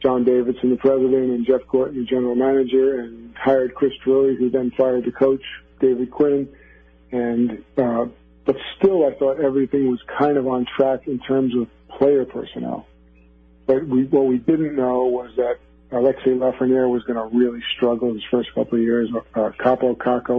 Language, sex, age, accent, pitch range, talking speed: English, male, 50-69, American, 120-135 Hz, 180 wpm